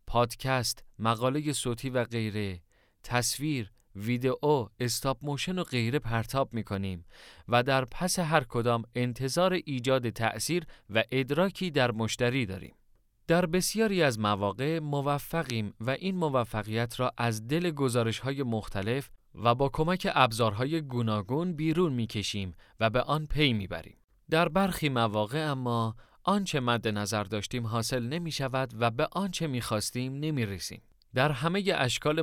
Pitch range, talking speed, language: 110-155 Hz, 130 wpm, Persian